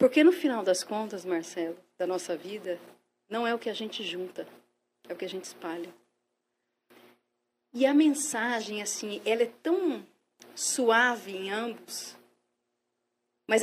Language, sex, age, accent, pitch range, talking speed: Portuguese, female, 40-59, Brazilian, 195-265 Hz, 145 wpm